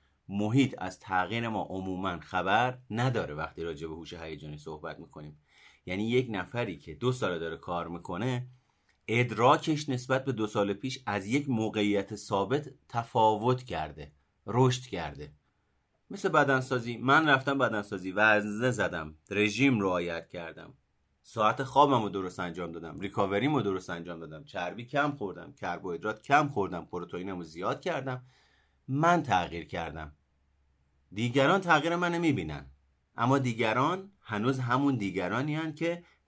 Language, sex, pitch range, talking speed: Persian, male, 85-130 Hz, 135 wpm